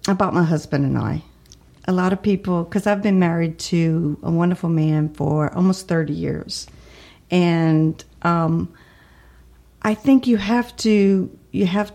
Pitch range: 165-195 Hz